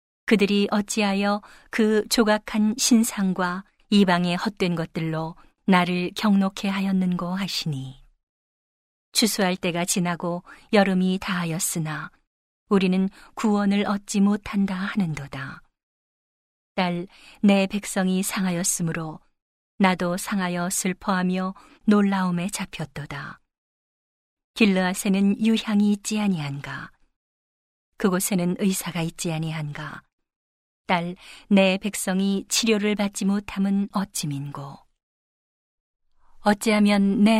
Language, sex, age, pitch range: Korean, female, 40-59, 175-205 Hz